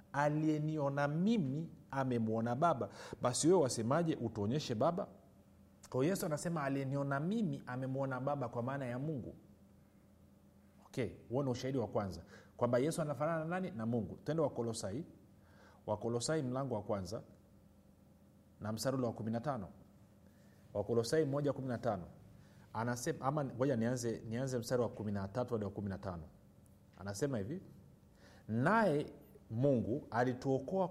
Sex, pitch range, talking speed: male, 110-145 Hz, 120 wpm